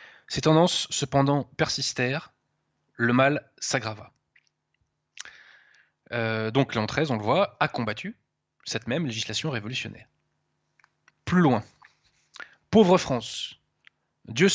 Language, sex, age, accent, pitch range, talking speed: French, male, 20-39, French, 125-155 Hz, 105 wpm